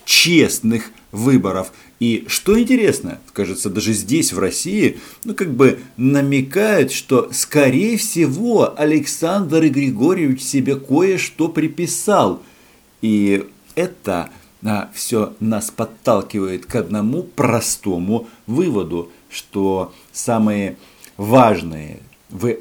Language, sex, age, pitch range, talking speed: Russian, male, 50-69, 95-135 Hz, 95 wpm